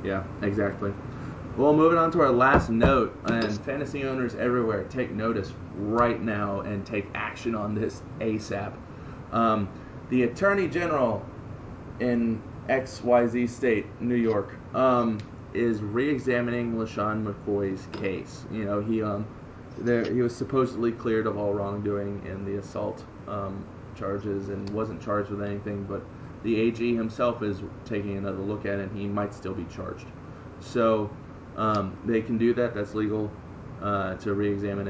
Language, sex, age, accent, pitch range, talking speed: English, male, 20-39, American, 100-120 Hz, 155 wpm